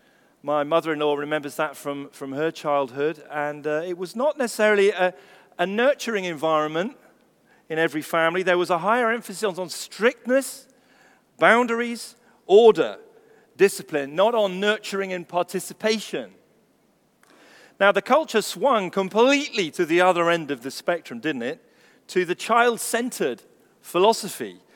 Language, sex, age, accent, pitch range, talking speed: English, male, 40-59, British, 165-230 Hz, 140 wpm